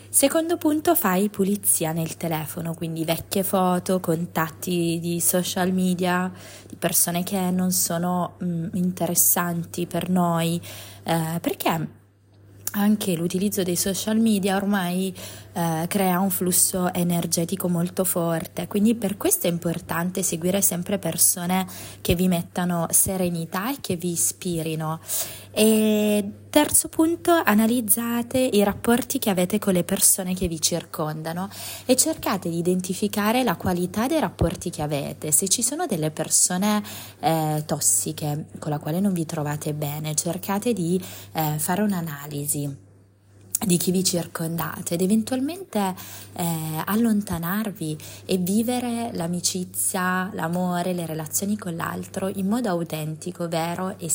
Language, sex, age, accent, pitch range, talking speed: Italian, female, 20-39, native, 165-195 Hz, 130 wpm